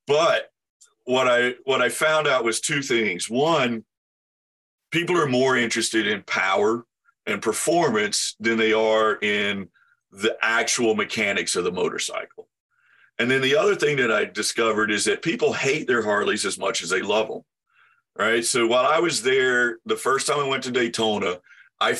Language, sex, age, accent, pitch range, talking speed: English, male, 40-59, American, 115-175 Hz, 170 wpm